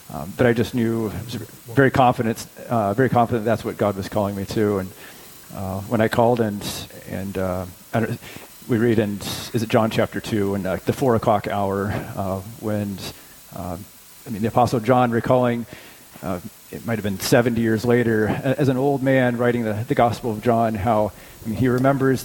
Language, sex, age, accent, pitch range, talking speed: English, male, 30-49, American, 105-125 Hz, 205 wpm